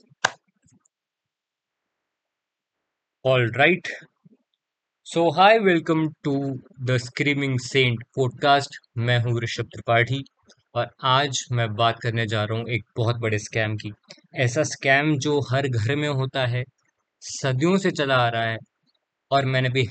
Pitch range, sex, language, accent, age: 115-135 Hz, male, Hindi, native, 20-39